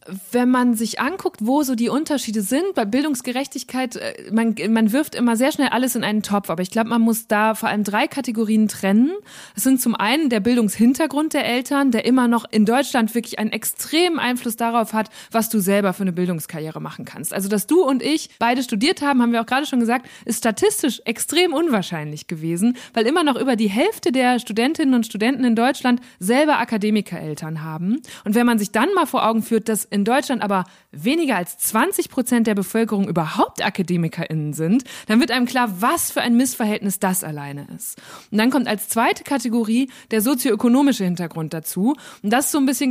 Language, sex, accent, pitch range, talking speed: German, female, German, 210-260 Hz, 200 wpm